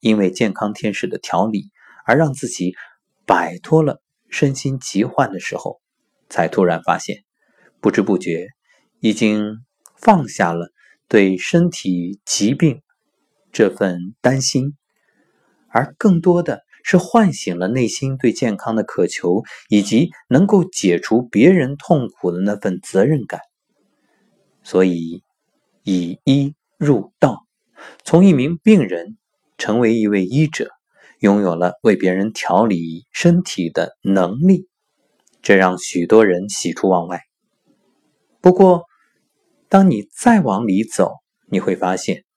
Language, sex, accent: Chinese, male, native